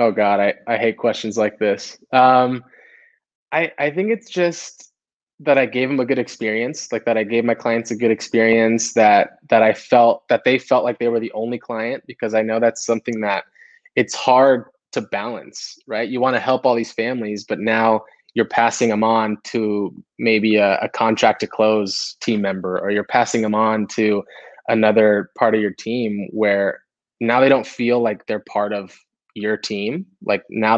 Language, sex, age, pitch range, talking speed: English, male, 20-39, 105-125 Hz, 195 wpm